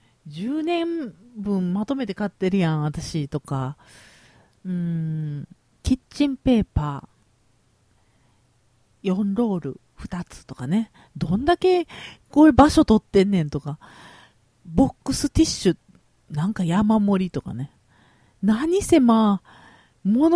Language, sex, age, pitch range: Japanese, female, 40-59, 135-220 Hz